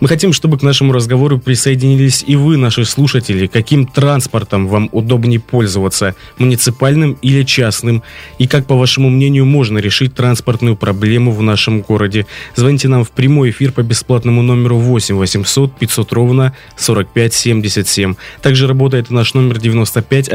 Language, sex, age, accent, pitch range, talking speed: Russian, male, 20-39, native, 110-130 Hz, 140 wpm